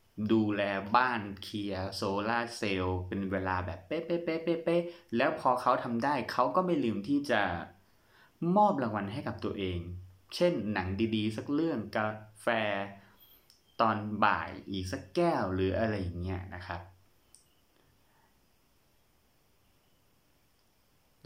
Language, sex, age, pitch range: Thai, male, 20-39, 95-120 Hz